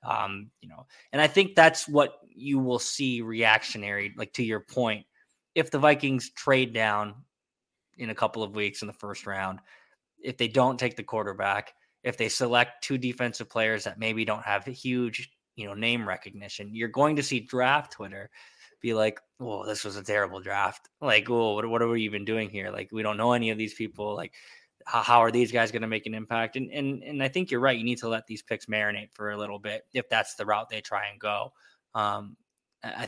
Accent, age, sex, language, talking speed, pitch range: American, 20-39, male, English, 220 wpm, 105-125 Hz